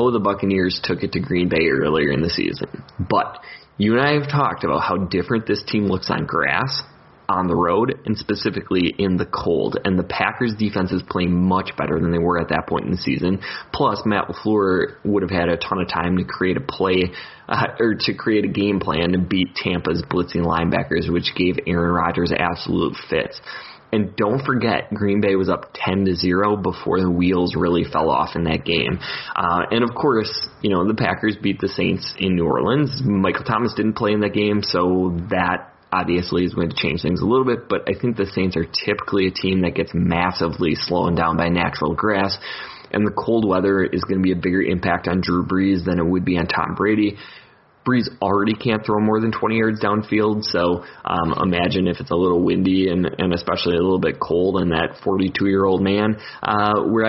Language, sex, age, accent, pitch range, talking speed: English, male, 20-39, American, 90-105 Hz, 210 wpm